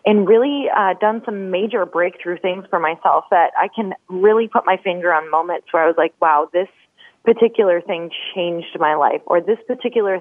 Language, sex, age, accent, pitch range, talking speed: English, female, 20-39, American, 175-220 Hz, 195 wpm